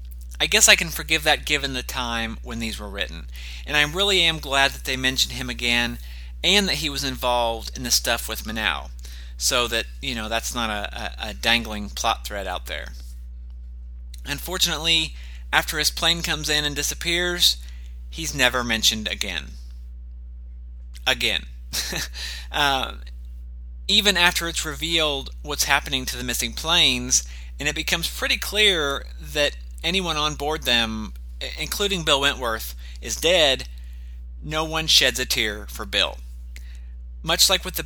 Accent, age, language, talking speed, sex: American, 30-49, English, 150 wpm, male